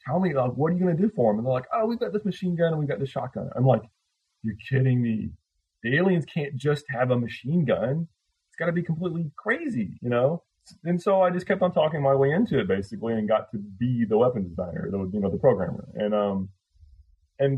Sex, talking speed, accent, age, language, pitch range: male, 255 wpm, American, 30-49, English, 95-140 Hz